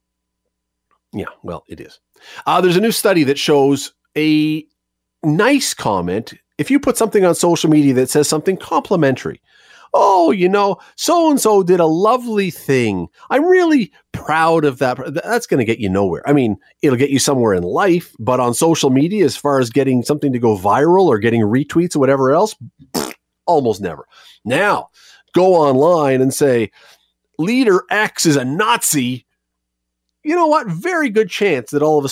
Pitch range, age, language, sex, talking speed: 125-195 Hz, 40-59, English, male, 170 wpm